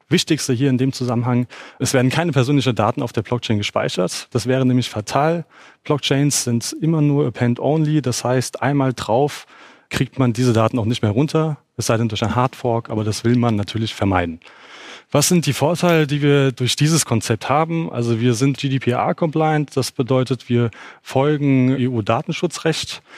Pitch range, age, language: 115-140 Hz, 30-49, German